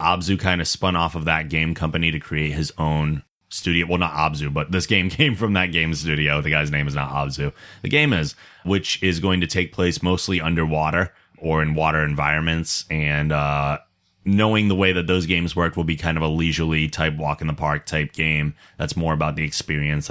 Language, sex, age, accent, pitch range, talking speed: English, male, 30-49, American, 80-95 Hz, 220 wpm